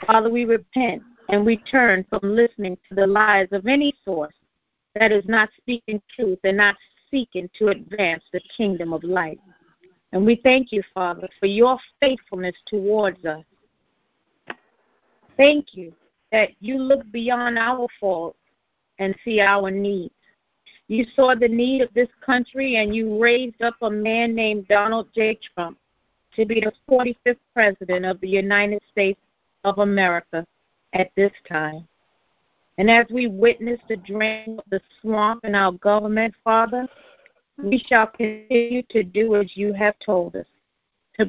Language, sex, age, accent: English, female, 40-59, American